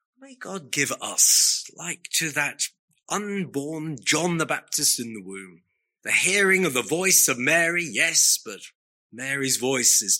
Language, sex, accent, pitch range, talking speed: English, male, British, 115-150 Hz, 155 wpm